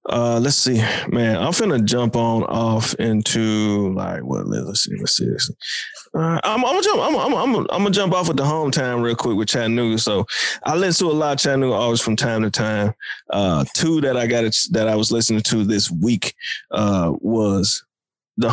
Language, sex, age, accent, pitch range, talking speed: English, male, 20-39, American, 110-135 Hz, 205 wpm